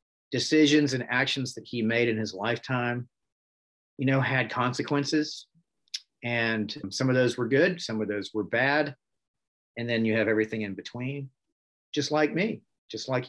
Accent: American